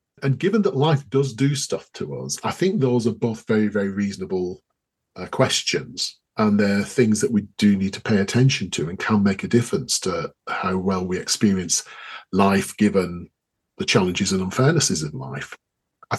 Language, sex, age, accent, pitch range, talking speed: English, male, 40-59, British, 100-140 Hz, 180 wpm